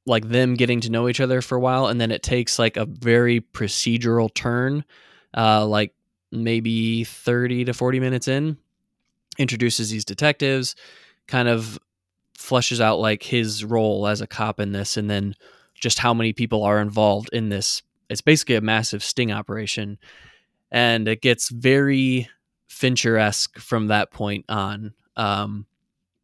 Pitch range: 110-125 Hz